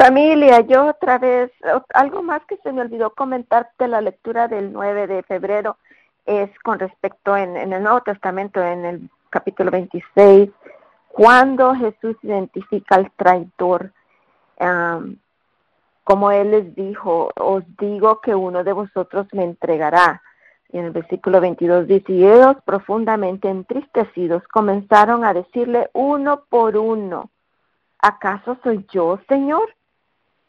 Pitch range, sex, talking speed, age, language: 195-240 Hz, female, 130 wpm, 50-69, English